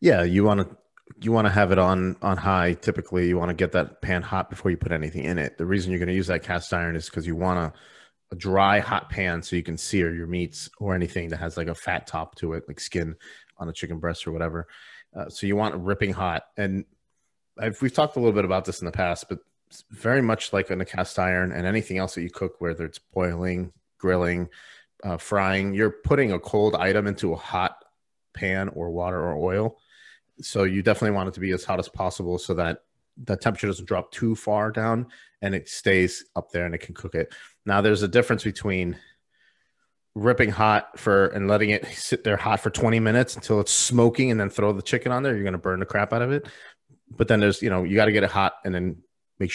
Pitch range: 90-105 Hz